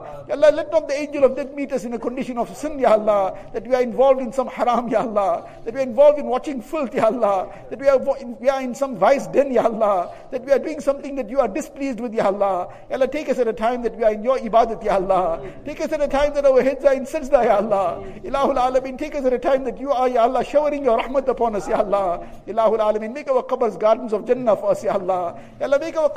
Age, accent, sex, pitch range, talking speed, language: 60-79, Indian, male, 205-270 Hz, 260 wpm, English